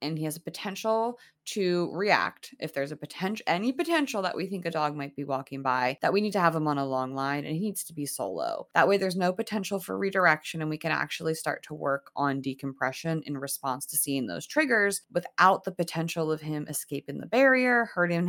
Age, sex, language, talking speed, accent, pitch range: 20-39, female, English, 225 wpm, American, 150-190 Hz